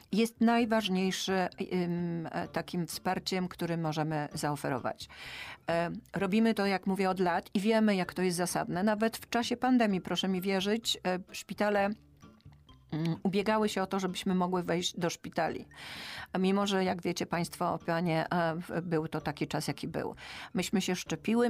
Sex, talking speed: female, 140 wpm